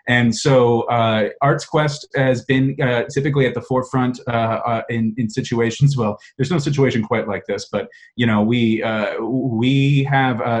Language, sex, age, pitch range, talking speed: English, male, 30-49, 110-135 Hz, 175 wpm